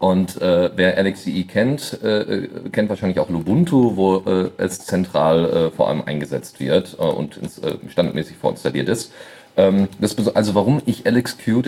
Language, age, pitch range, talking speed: German, 40-59, 90-120 Hz, 170 wpm